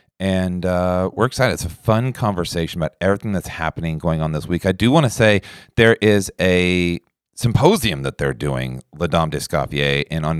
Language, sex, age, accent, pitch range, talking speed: English, male, 40-59, American, 80-105 Hz, 190 wpm